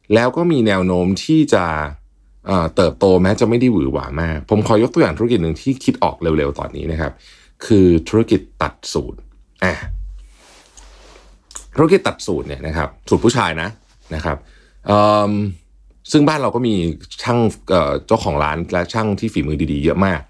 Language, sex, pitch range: Thai, male, 75-105 Hz